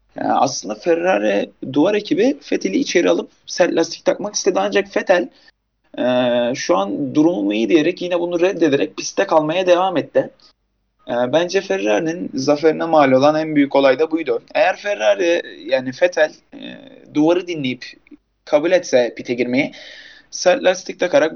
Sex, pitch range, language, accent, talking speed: male, 140-180 Hz, Turkish, native, 135 wpm